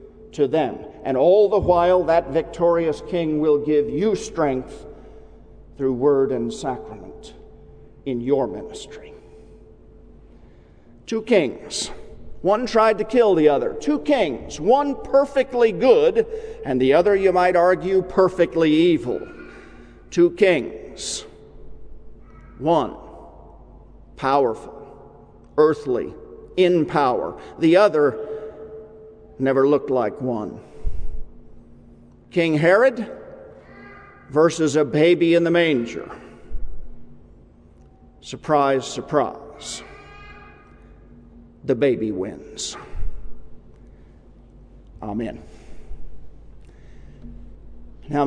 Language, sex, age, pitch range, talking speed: English, male, 50-69, 130-215 Hz, 85 wpm